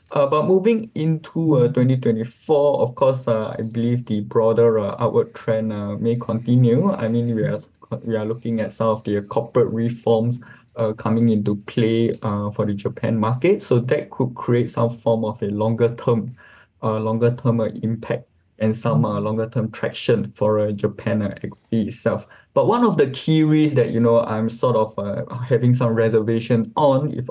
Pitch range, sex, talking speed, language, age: 110-120 Hz, male, 185 wpm, English, 20-39